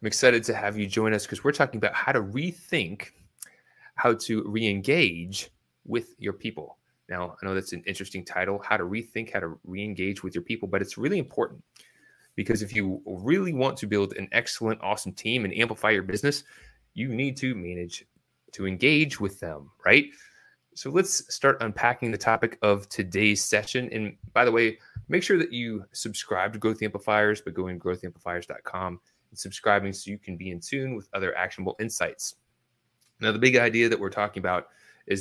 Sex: male